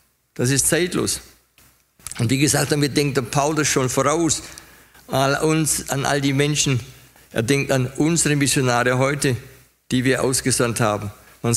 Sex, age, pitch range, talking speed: male, 60-79, 120-150 Hz, 150 wpm